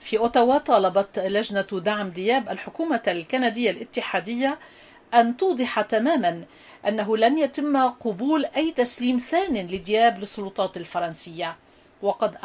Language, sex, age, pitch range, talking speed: Arabic, female, 40-59, 205-275 Hz, 110 wpm